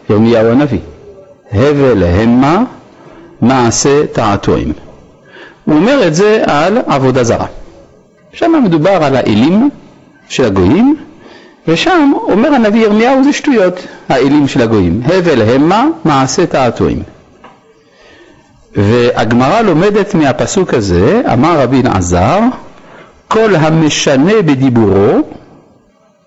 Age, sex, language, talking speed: 50-69, male, Hebrew, 95 wpm